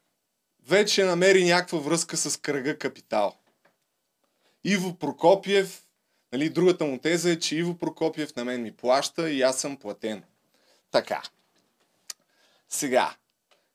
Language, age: Bulgarian, 30-49